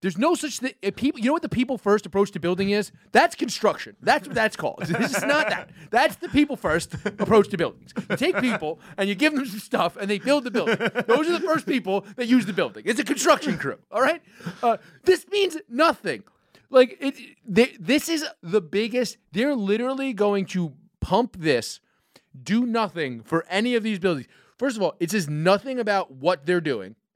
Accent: American